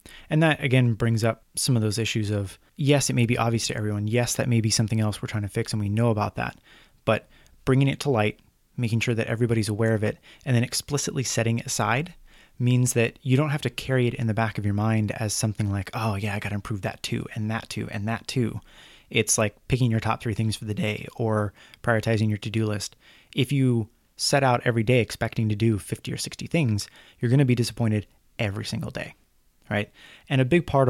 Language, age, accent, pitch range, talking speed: English, 20-39, American, 110-125 Hz, 235 wpm